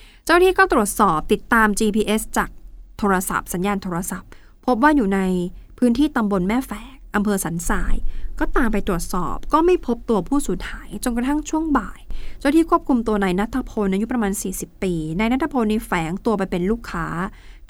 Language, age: Thai, 20-39